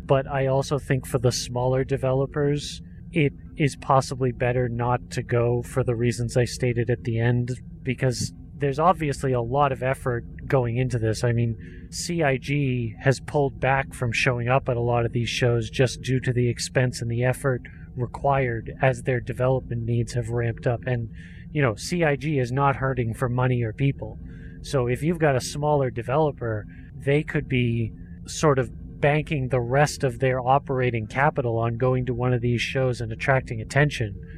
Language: English